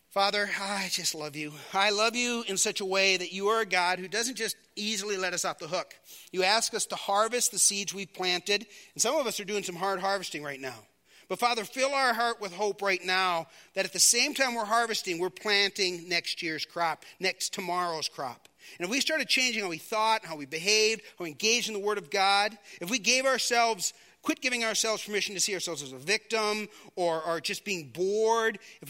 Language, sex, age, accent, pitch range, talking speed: English, male, 40-59, American, 165-210 Hz, 225 wpm